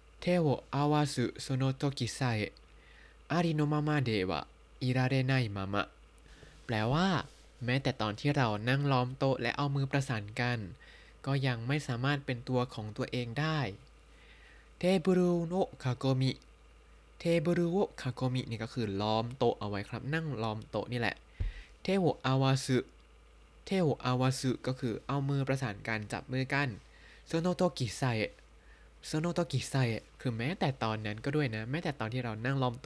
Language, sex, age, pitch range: Thai, male, 20-39, 110-145 Hz